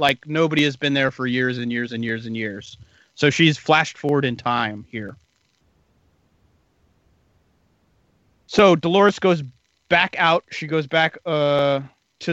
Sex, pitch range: male, 130-165 Hz